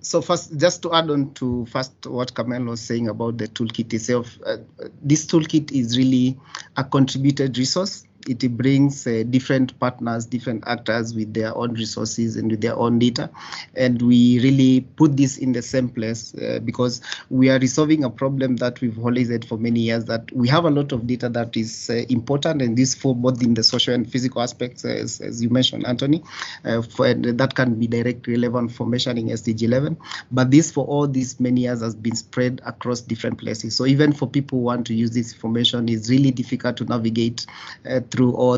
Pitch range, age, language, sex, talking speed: 120-135 Hz, 30-49, English, male, 200 wpm